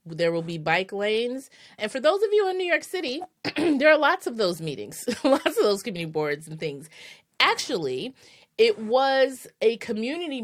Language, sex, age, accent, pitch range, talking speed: English, female, 30-49, American, 165-215 Hz, 185 wpm